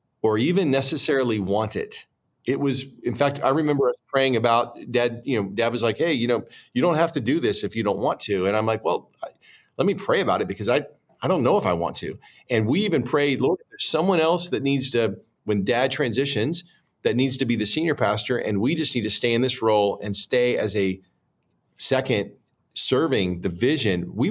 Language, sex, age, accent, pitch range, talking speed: English, male, 40-59, American, 110-145 Hz, 220 wpm